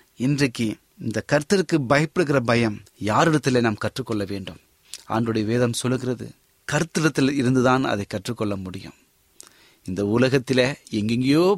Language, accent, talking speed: Tamil, native, 100 wpm